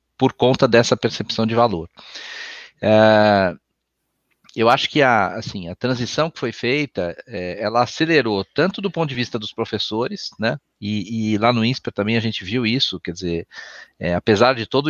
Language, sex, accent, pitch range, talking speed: Portuguese, male, Brazilian, 100-135 Hz, 160 wpm